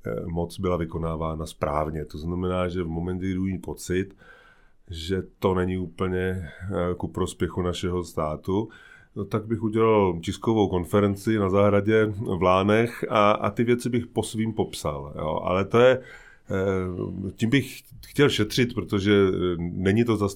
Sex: male